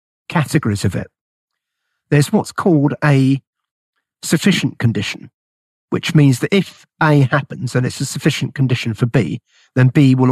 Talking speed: 145 wpm